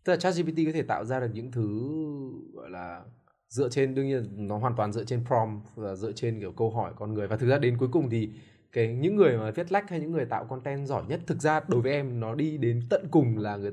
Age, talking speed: 20-39, 275 wpm